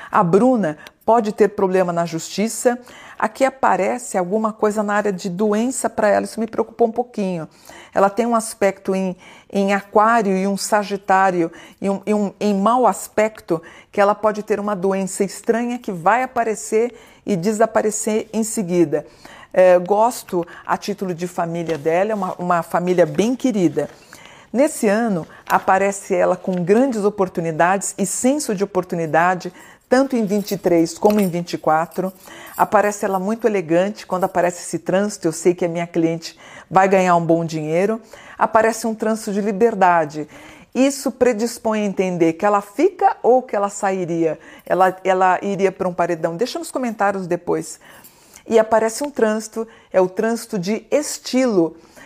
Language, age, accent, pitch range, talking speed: Portuguese, 50-69, Brazilian, 180-225 Hz, 160 wpm